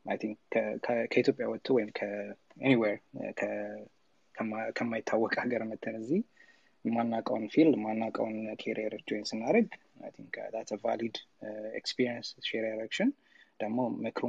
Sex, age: male, 20-39